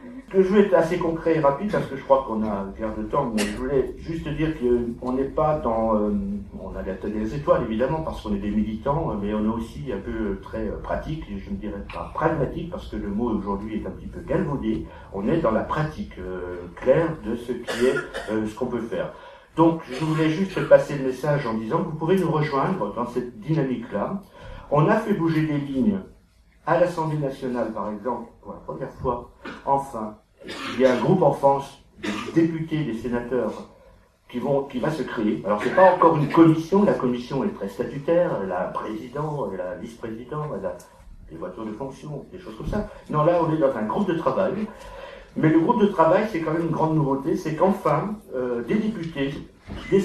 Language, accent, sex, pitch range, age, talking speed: French, French, male, 115-165 Hz, 60-79, 225 wpm